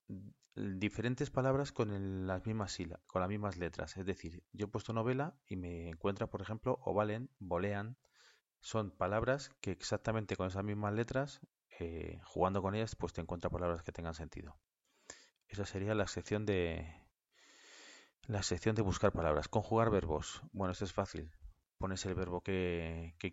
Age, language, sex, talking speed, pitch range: 30-49, Spanish, male, 165 wpm, 85-105 Hz